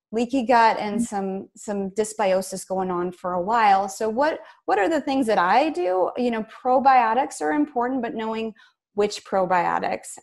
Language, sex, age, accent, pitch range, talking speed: English, female, 20-39, American, 190-235 Hz, 170 wpm